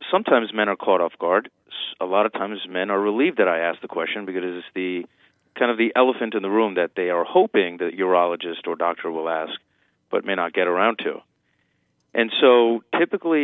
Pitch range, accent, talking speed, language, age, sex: 90-115 Hz, American, 215 wpm, English, 30-49, male